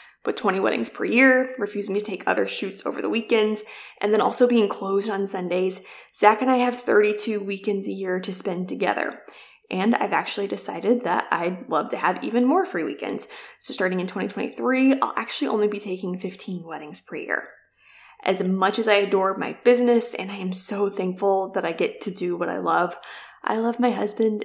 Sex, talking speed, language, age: female, 200 wpm, English, 20-39